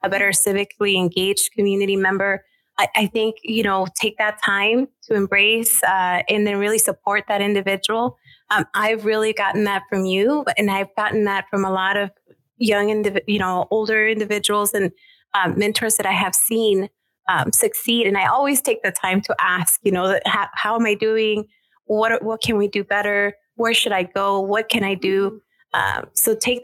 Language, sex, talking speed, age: English, female, 195 wpm, 20-39